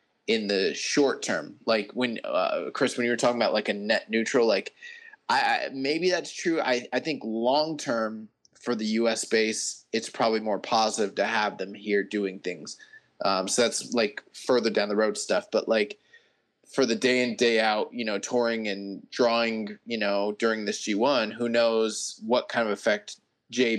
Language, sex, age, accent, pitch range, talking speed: English, male, 20-39, American, 110-135 Hz, 190 wpm